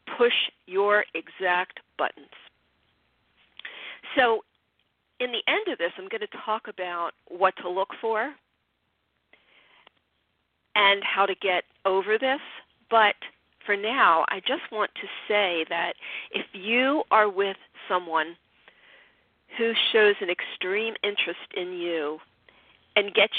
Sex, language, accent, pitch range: female, English, American, 180-230 Hz